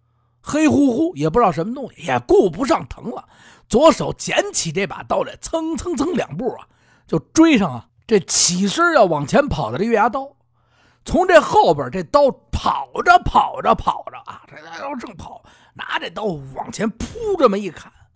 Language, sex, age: Chinese, male, 50-69